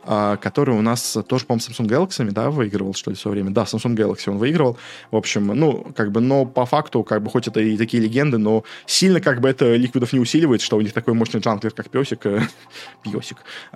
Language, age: Russian, 20-39